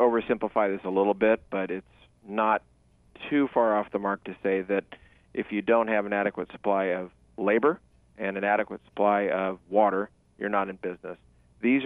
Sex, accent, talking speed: male, American, 180 wpm